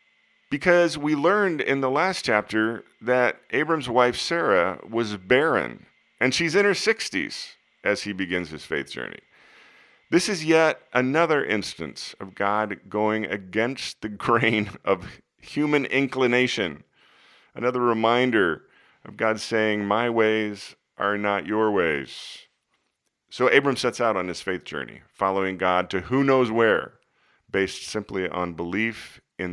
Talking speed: 140 wpm